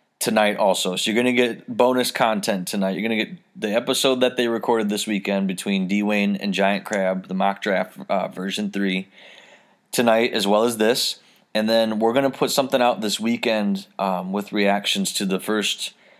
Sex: male